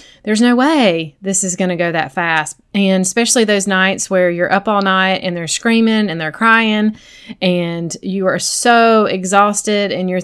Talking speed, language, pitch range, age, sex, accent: 190 wpm, English, 185-230 Hz, 30-49, female, American